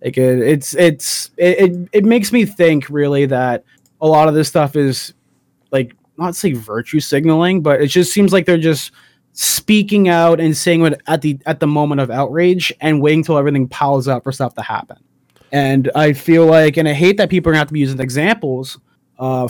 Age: 20-39